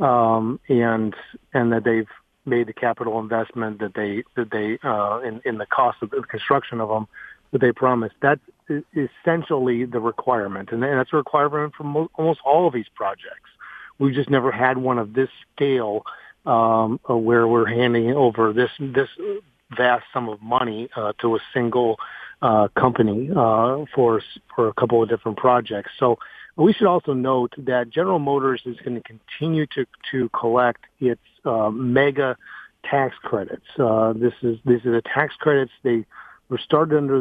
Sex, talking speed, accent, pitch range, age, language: male, 175 wpm, American, 115-140 Hz, 40-59, English